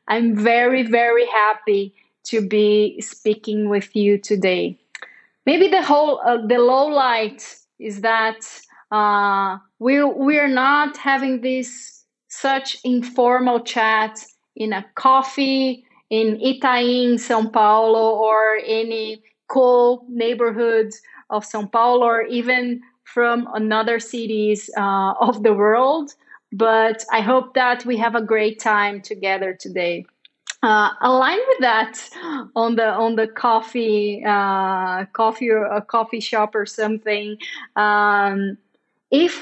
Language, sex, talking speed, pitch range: English, female, 125 wpm, 210-245 Hz